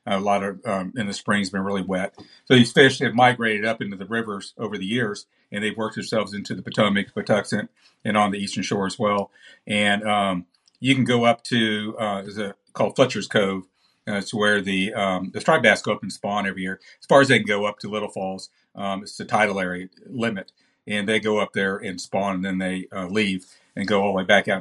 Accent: American